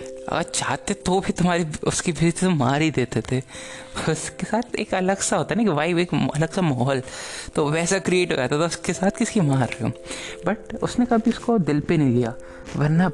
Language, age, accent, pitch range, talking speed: Hindi, 20-39, native, 130-170 Hz, 215 wpm